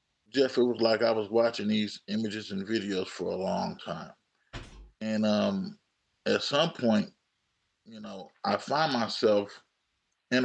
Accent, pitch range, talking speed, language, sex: American, 100-115 Hz, 150 wpm, English, male